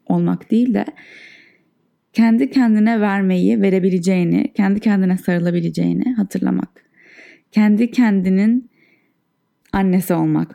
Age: 20-39